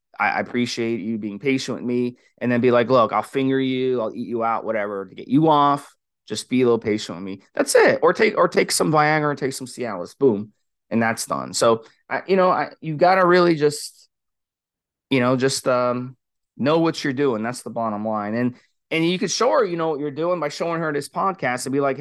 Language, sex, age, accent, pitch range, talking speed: English, male, 20-39, American, 120-150 Hz, 235 wpm